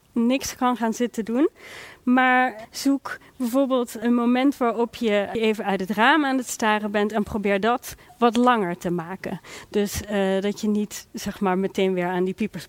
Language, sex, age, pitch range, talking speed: Dutch, female, 30-49, 195-235 Hz, 185 wpm